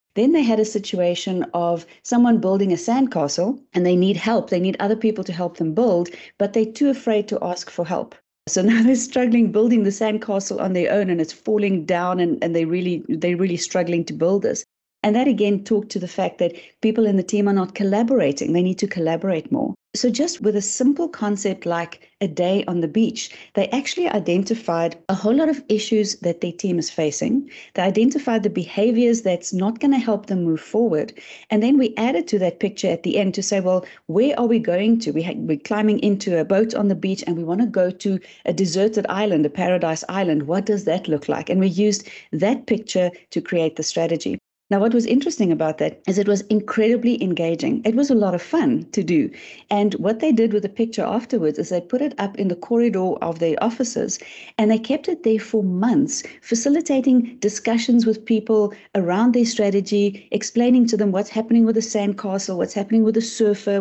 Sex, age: female, 30-49